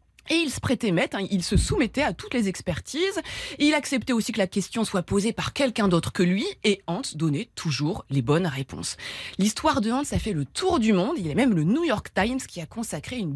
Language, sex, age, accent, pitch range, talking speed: French, female, 20-39, French, 175-265 Hz, 245 wpm